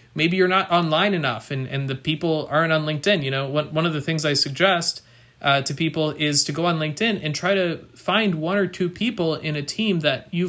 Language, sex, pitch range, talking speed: English, male, 140-180 Hz, 240 wpm